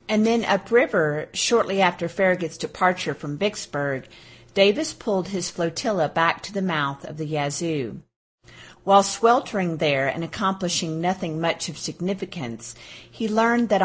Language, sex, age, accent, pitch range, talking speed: English, female, 40-59, American, 155-200 Hz, 140 wpm